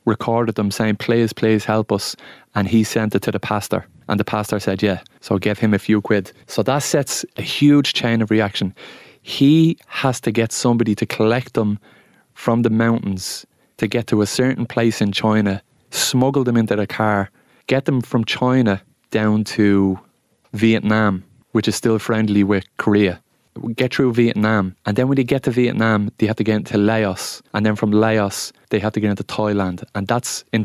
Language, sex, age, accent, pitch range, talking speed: English, male, 20-39, Irish, 105-120 Hz, 195 wpm